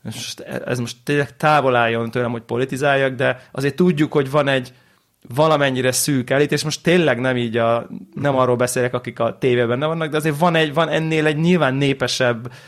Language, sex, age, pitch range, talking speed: Hungarian, male, 30-49, 115-150 Hz, 180 wpm